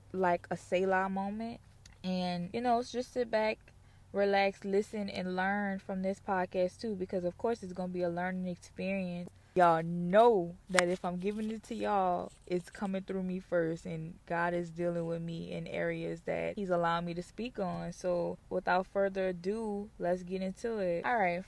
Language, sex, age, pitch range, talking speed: English, female, 20-39, 170-195 Hz, 185 wpm